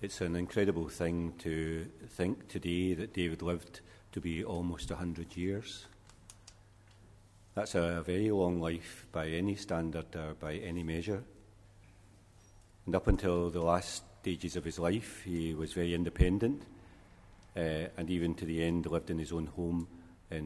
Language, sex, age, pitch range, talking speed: English, male, 50-69, 85-100 Hz, 155 wpm